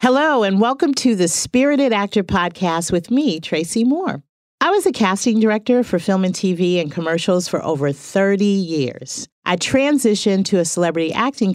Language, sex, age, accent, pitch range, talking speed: English, female, 40-59, American, 160-235 Hz, 170 wpm